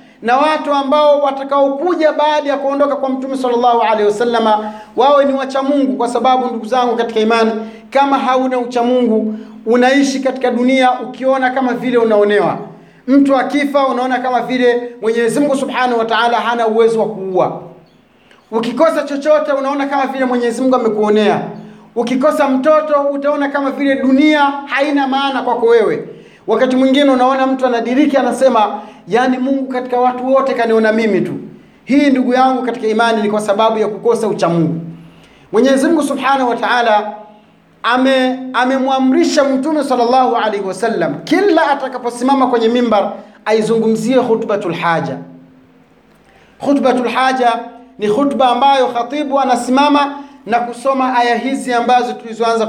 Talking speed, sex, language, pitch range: 140 wpm, male, Swahili, 225-275 Hz